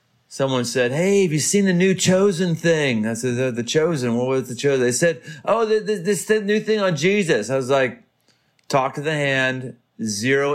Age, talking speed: 40-59, 195 wpm